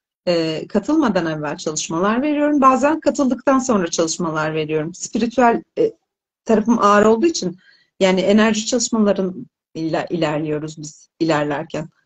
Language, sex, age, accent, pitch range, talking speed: Turkish, female, 40-59, native, 185-260 Hz, 110 wpm